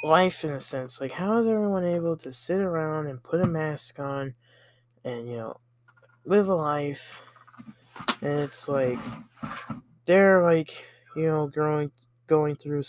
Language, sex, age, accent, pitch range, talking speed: English, male, 20-39, American, 125-175 Hz, 155 wpm